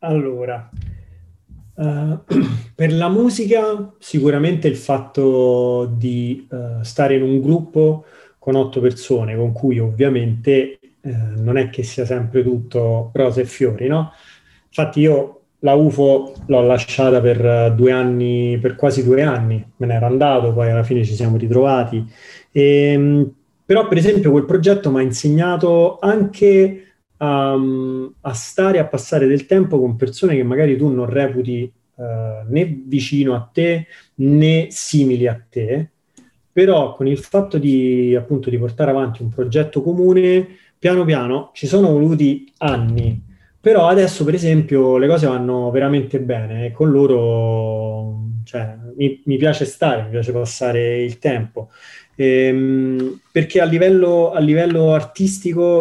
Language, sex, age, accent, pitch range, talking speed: Italian, male, 30-49, native, 125-155 Hz, 140 wpm